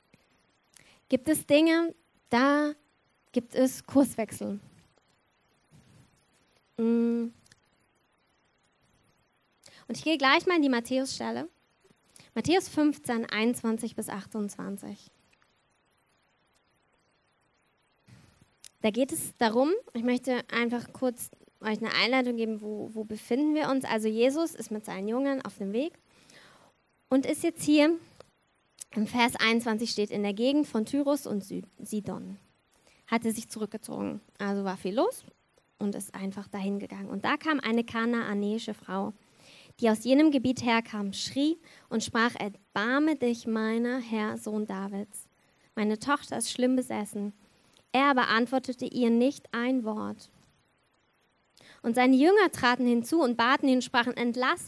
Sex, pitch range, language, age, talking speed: female, 220-265 Hz, German, 20-39, 125 wpm